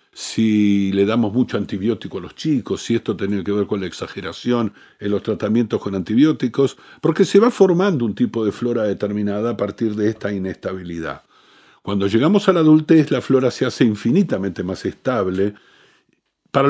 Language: Spanish